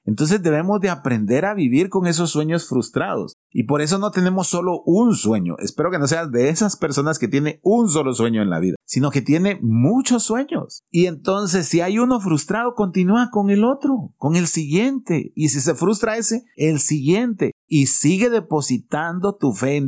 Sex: male